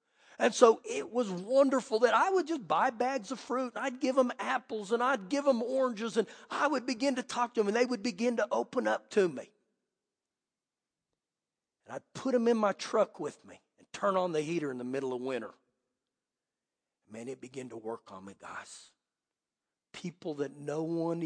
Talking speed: 200 wpm